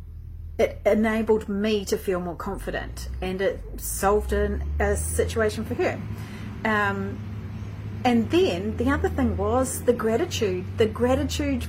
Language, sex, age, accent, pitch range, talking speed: English, female, 30-49, Australian, 190-245 Hz, 130 wpm